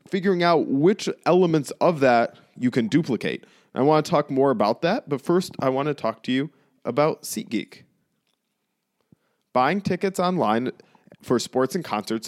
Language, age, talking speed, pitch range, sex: English, 20-39, 160 wpm, 115-155 Hz, male